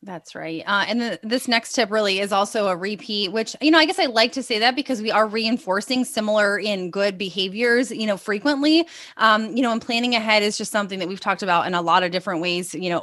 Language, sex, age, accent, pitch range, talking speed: English, female, 20-39, American, 190-240 Hz, 250 wpm